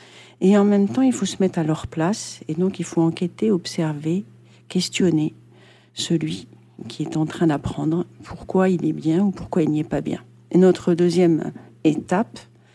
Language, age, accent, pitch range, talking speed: French, 50-69, French, 155-185 Hz, 185 wpm